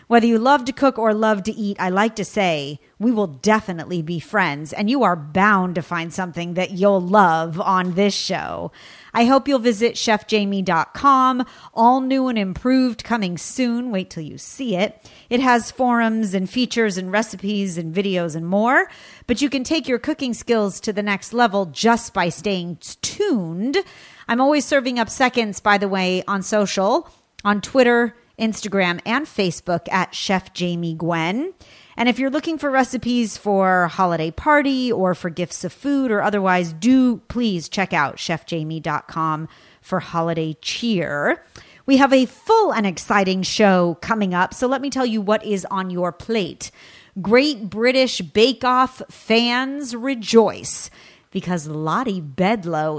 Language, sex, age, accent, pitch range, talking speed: English, female, 40-59, American, 180-245 Hz, 165 wpm